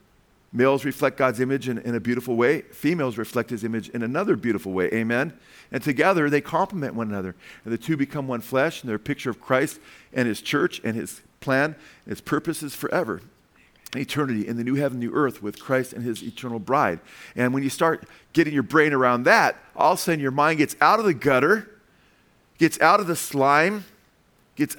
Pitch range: 125-165 Hz